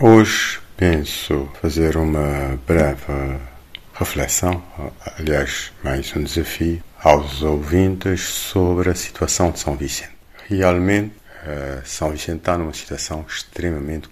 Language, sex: Portuguese, male